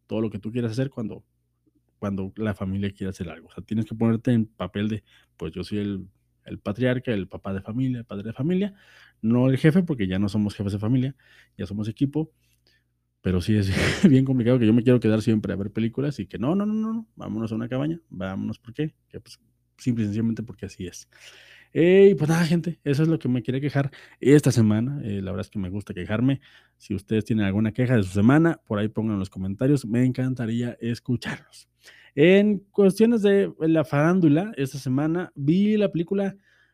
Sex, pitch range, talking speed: male, 105-145 Hz, 215 wpm